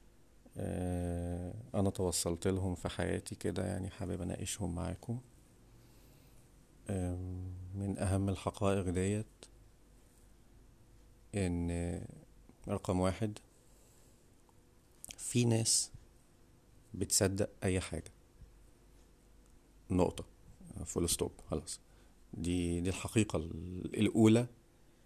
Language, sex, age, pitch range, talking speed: Arabic, male, 50-69, 85-110 Hz, 70 wpm